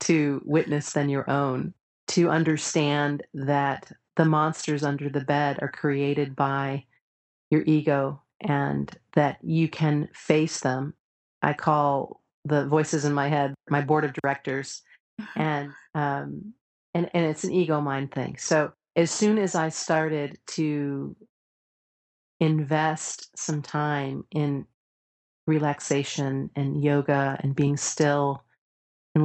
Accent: American